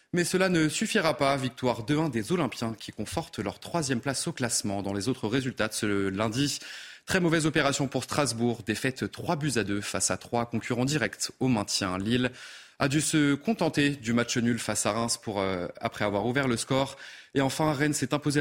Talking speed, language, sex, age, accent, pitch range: 205 wpm, French, male, 30-49, French, 110-145 Hz